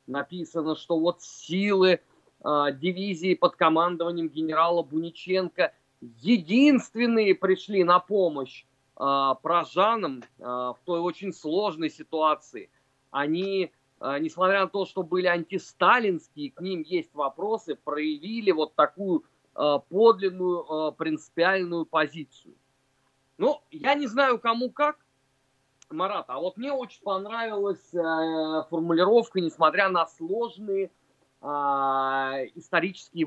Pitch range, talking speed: 155-205 Hz, 105 wpm